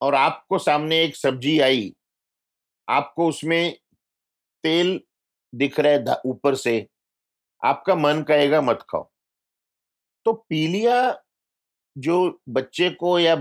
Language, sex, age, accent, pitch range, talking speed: Hindi, male, 50-69, native, 130-160 Hz, 110 wpm